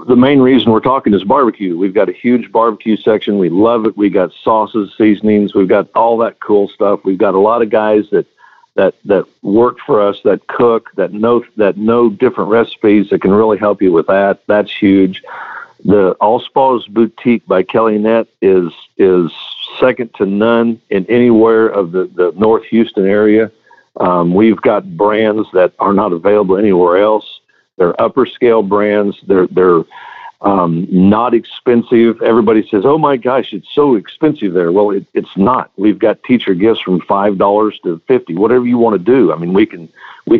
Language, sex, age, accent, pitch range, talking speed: English, male, 50-69, American, 100-120 Hz, 185 wpm